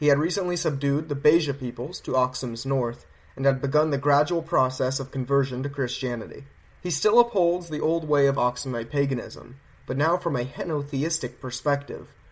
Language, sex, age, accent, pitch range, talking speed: English, male, 30-49, American, 130-155 Hz, 170 wpm